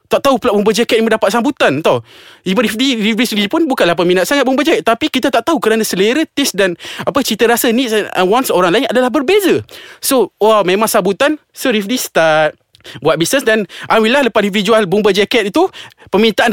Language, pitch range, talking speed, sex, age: Malay, 170-250 Hz, 200 wpm, male, 20-39